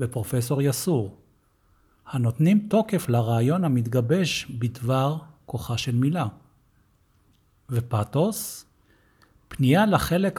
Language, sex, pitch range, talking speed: Persian, male, 115-155 Hz, 75 wpm